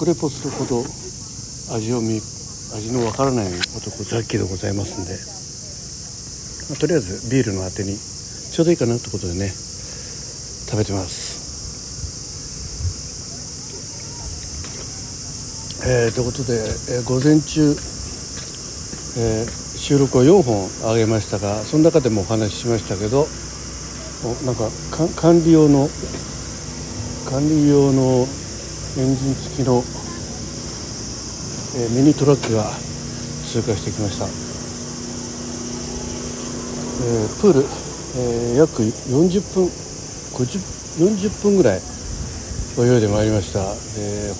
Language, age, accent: Japanese, 60-79, native